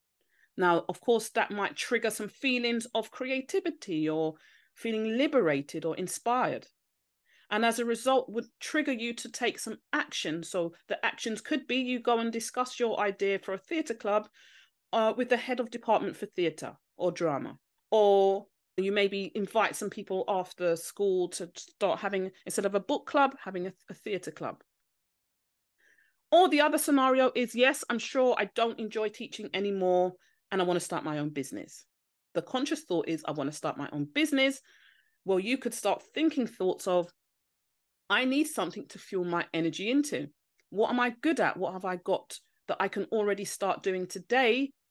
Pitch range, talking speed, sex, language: 175-235 Hz, 180 wpm, female, English